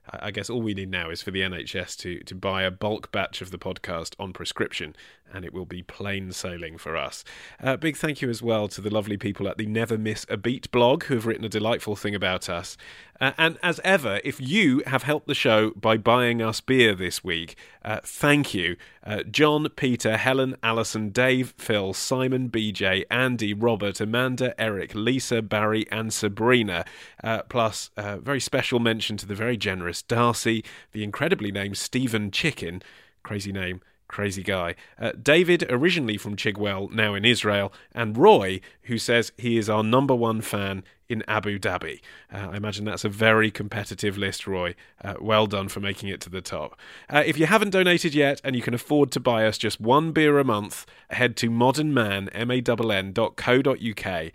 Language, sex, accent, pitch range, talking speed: English, male, British, 100-125 Hz, 190 wpm